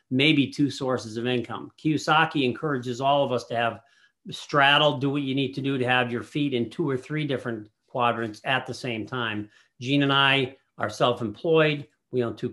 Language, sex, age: English, male, 50-69